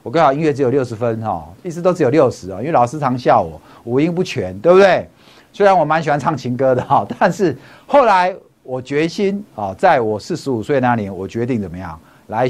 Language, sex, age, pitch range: Chinese, male, 50-69, 130-200 Hz